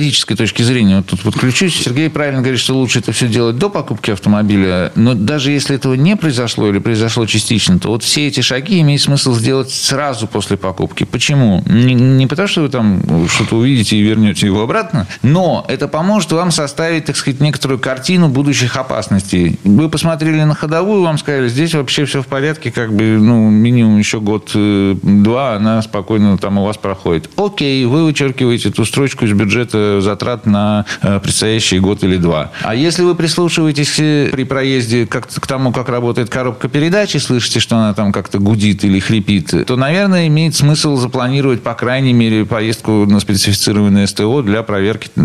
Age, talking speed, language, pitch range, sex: 50-69, 170 wpm, Russian, 105-145 Hz, male